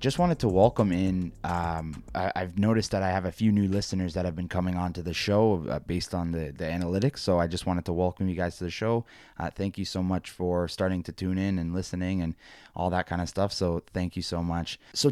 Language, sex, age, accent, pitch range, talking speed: English, male, 20-39, American, 90-110 Hz, 255 wpm